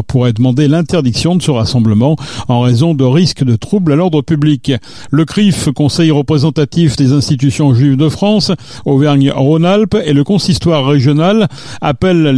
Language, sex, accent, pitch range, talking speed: French, male, French, 130-165 Hz, 145 wpm